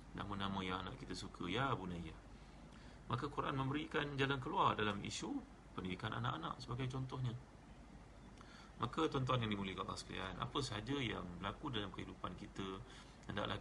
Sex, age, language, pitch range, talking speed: male, 30-49, Malay, 95-115 Hz, 135 wpm